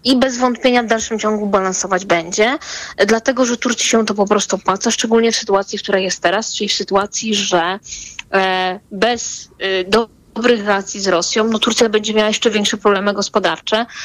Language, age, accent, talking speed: Polish, 20-39, native, 170 wpm